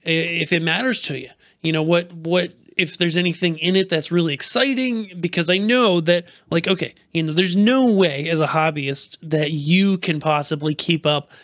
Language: English